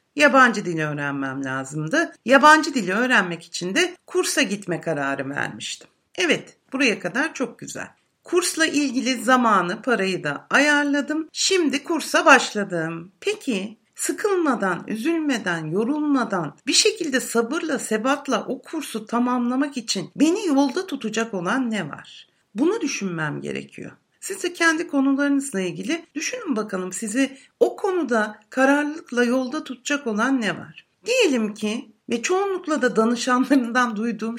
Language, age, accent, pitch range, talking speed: Turkish, 60-79, native, 215-310 Hz, 125 wpm